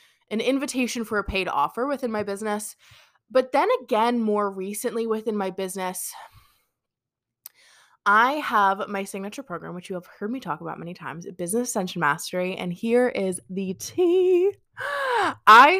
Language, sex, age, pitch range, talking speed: English, female, 20-39, 190-250 Hz, 150 wpm